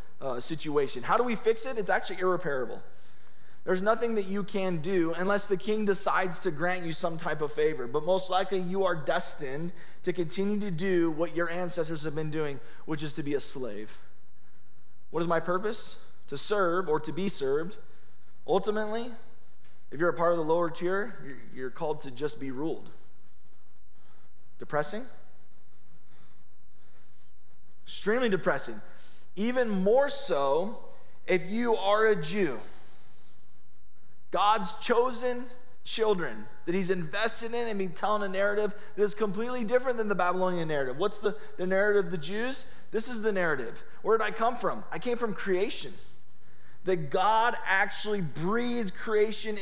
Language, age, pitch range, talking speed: English, 20-39, 170-220 Hz, 160 wpm